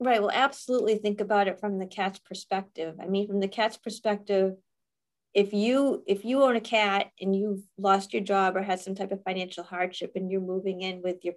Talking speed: 215 wpm